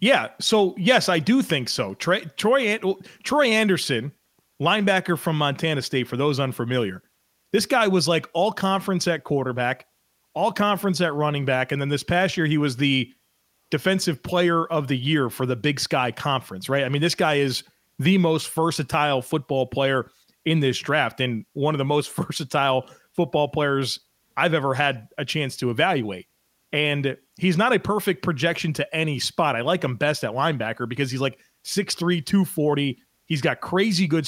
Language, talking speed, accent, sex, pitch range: English, 180 wpm, American, male, 135-175 Hz